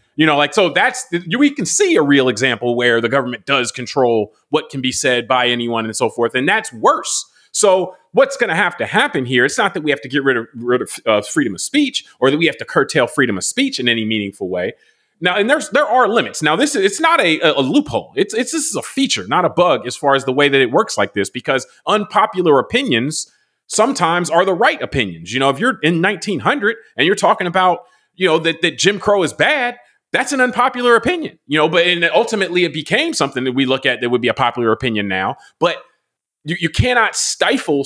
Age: 30-49